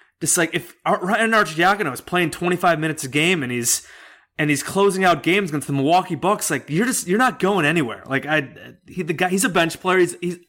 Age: 20-39